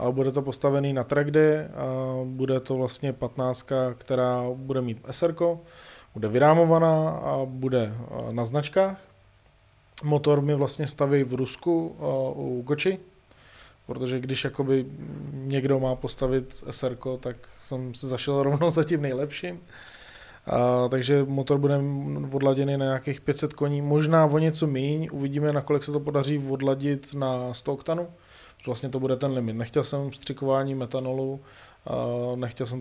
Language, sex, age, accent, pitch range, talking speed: Czech, male, 20-39, native, 125-145 Hz, 145 wpm